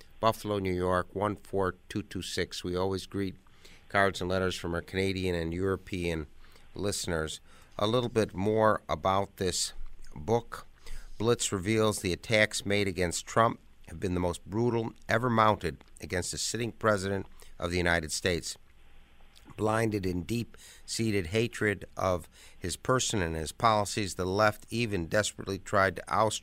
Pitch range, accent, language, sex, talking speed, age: 90-110 Hz, American, English, male, 140 wpm, 50-69